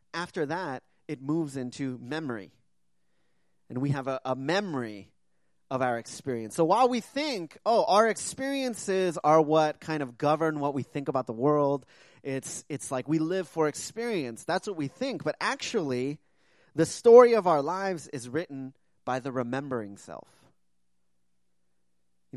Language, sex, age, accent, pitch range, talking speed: English, male, 30-49, American, 120-165 Hz, 155 wpm